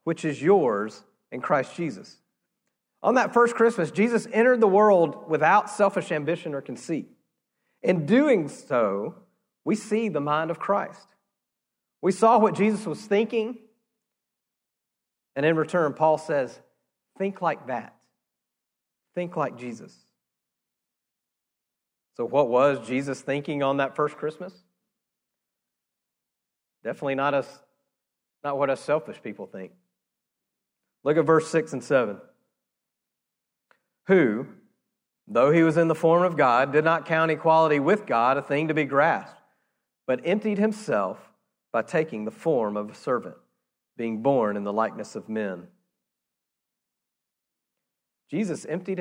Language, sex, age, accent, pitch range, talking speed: English, male, 40-59, American, 140-205 Hz, 130 wpm